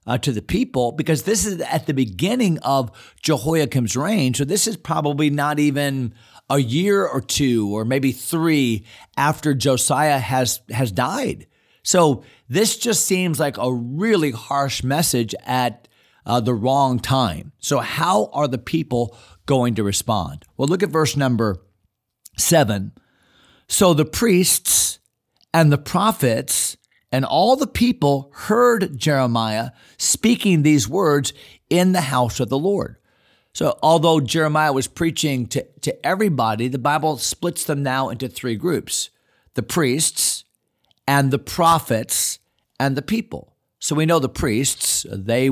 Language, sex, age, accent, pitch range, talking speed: English, male, 40-59, American, 115-160 Hz, 145 wpm